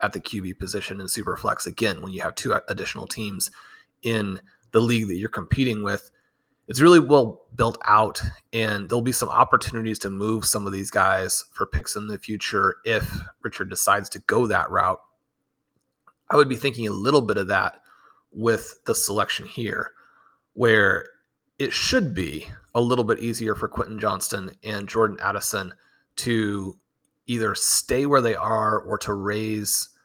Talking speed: 170 wpm